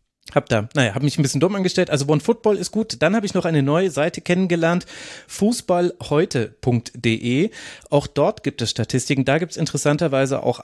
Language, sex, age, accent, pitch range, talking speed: German, male, 30-49, German, 120-160 Hz, 180 wpm